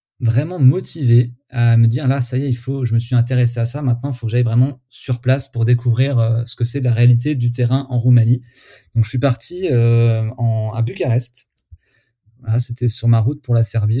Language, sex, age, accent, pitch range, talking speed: French, male, 30-49, French, 115-130 Hz, 240 wpm